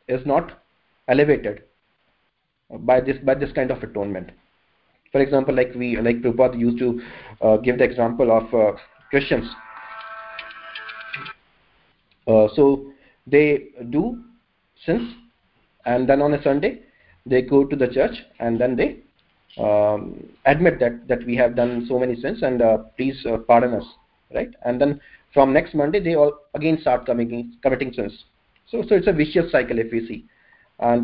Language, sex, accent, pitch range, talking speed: English, male, Indian, 120-145 Hz, 155 wpm